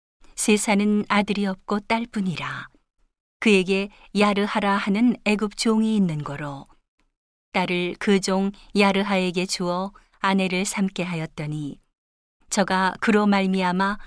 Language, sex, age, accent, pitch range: Korean, female, 40-59, native, 175-210 Hz